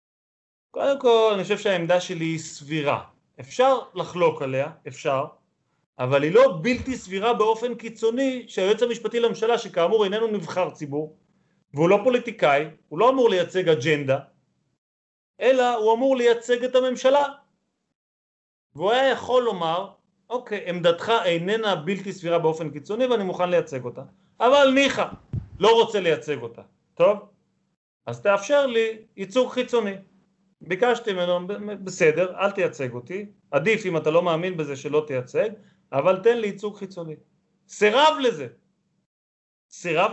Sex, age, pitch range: male, 30-49, 165-230 Hz